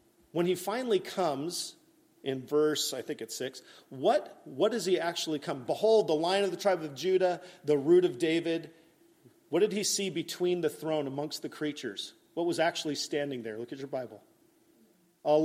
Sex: male